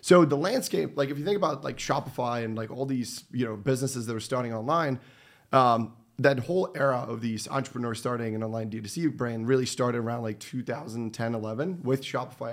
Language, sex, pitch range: English, male, 115-135 Hz